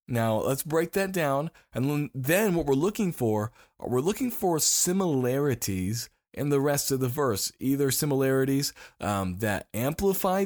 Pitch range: 115-160 Hz